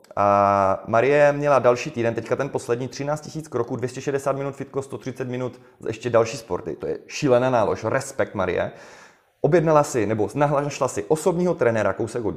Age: 30-49